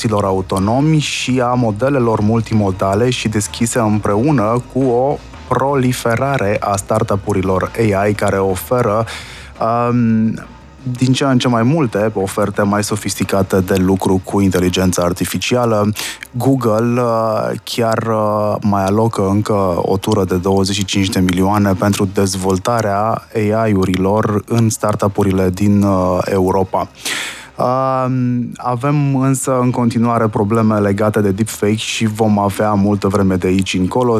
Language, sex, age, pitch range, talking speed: Romanian, male, 20-39, 100-115 Hz, 120 wpm